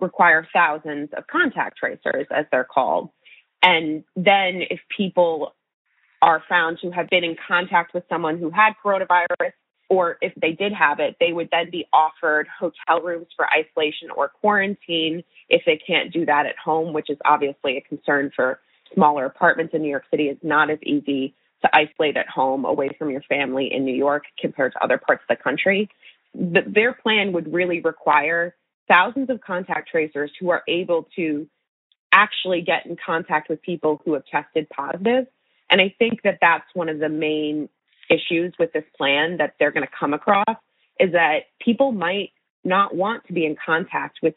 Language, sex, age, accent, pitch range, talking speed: English, female, 20-39, American, 155-195 Hz, 185 wpm